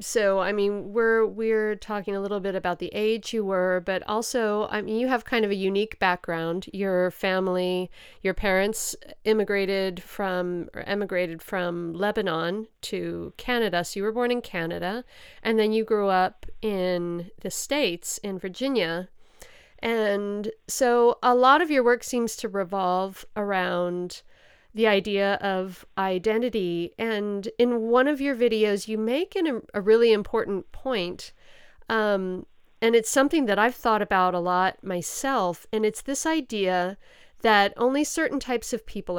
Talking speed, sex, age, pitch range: 155 wpm, female, 40-59, 185-225 Hz